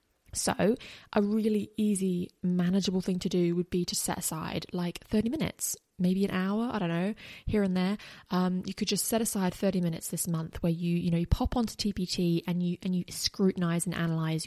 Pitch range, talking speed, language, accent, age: 170-195 Hz, 205 wpm, English, British, 20-39